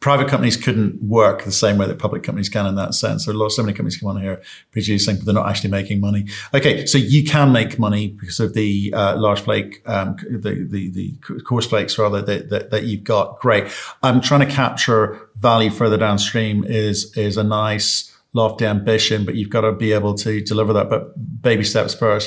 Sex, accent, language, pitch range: male, British, English, 105-130 Hz